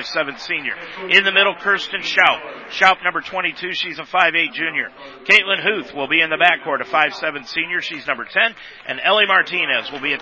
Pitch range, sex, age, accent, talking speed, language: 155-200 Hz, male, 50-69, American, 210 wpm, English